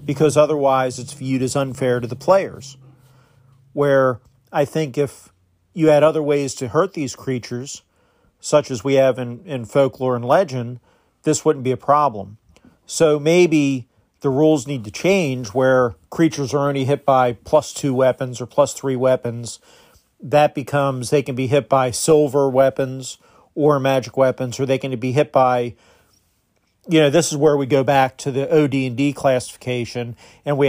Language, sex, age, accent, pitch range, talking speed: English, male, 40-59, American, 125-145 Hz, 170 wpm